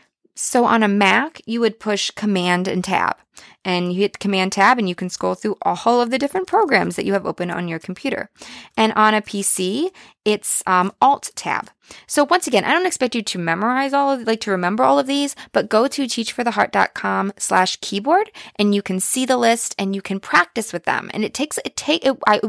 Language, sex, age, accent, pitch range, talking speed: English, female, 20-39, American, 185-270 Hz, 215 wpm